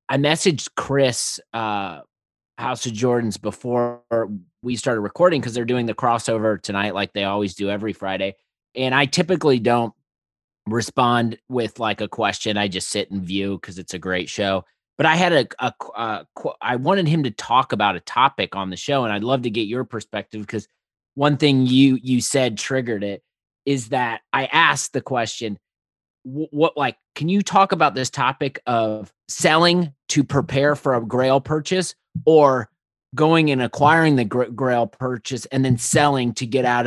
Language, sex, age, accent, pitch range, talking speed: English, male, 30-49, American, 110-140 Hz, 180 wpm